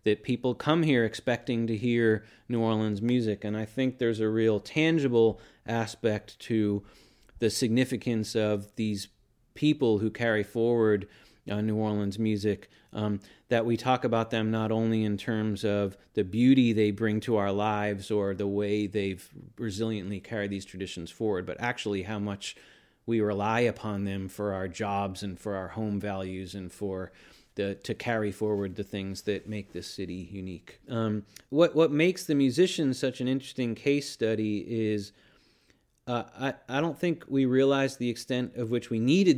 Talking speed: 170 wpm